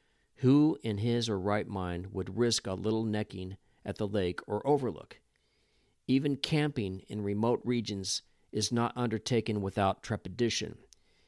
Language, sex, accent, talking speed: English, male, American, 140 wpm